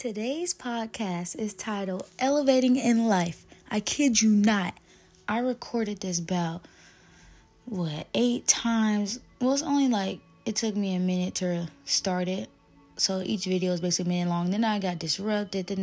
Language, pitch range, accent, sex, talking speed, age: English, 185-230 Hz, American, female, 165 wpm, 20-39